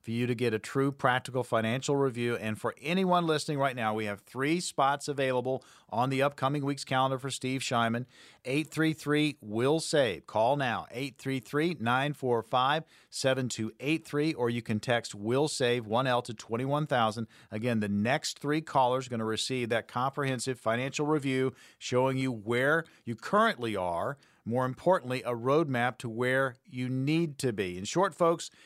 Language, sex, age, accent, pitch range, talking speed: English, male, 40-59, American, 120-150 Hz, 160 wpm